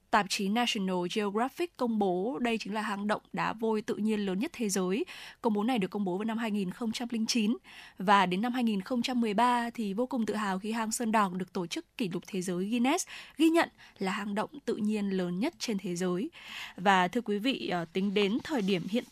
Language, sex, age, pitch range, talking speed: Vietnamese, female, 10-29, 190-240 Hz, 220 wpm